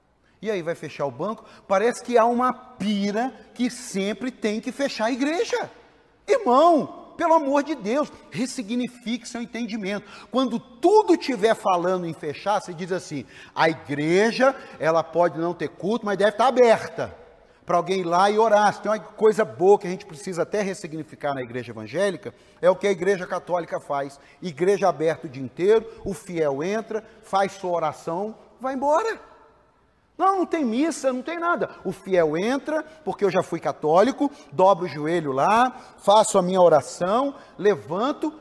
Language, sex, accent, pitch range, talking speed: Portuguese, male, Brazilian, 160-235 Hz, 170 wpm